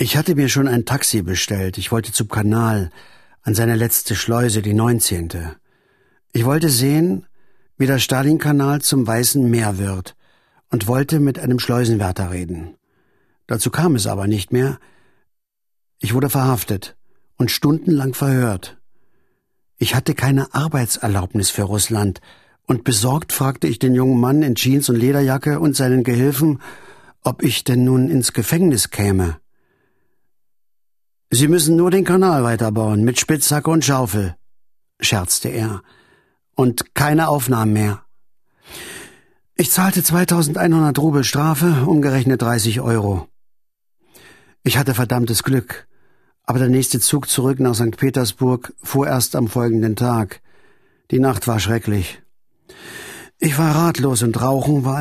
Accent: German